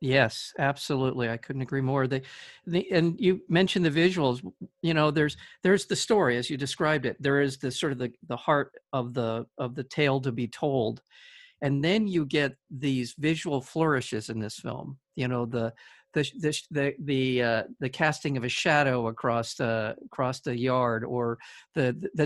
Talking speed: 190 wpm